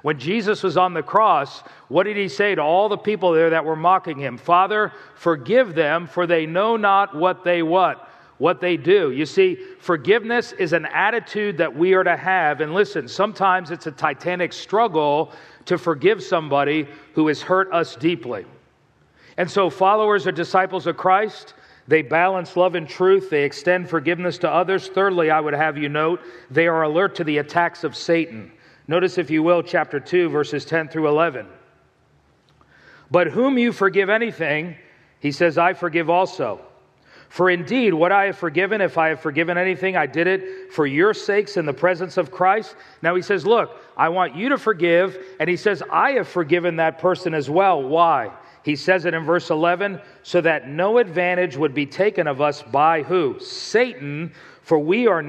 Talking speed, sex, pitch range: 185 wpm, male, 160-190 Hz